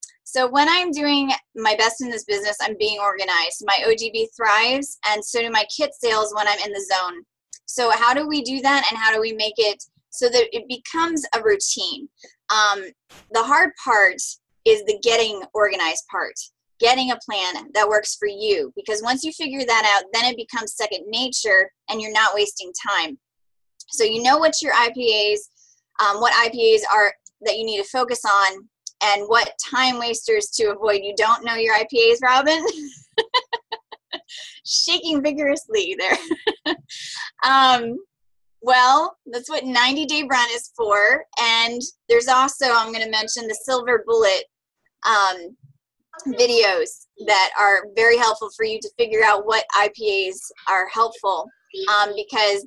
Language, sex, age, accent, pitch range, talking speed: English, female, 10-29, American, 210-285 Hz, 160 wpm